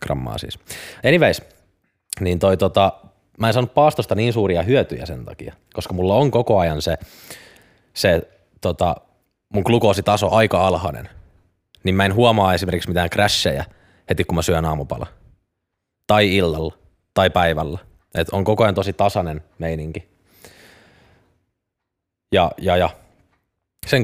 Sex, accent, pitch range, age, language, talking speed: male, native, 85-105 Hz, 20-39, Finnish, 135 wpm